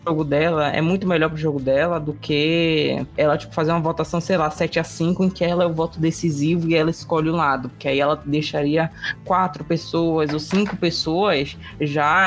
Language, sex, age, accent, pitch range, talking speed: Portuguese, female, 20-39, Brazilian, 150-180 Hz, 215 wpm